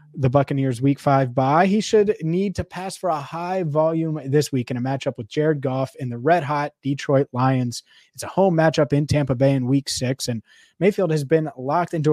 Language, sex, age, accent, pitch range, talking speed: English, male, 20-39, American, 130-160 Hz, 220 wpm